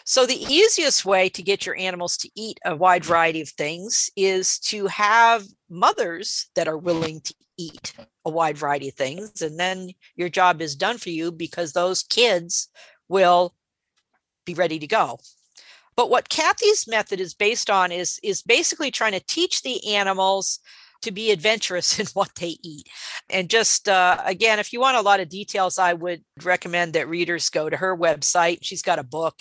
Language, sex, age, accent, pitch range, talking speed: English, female, 50-69, American, 175-230 Hz, 185 wpm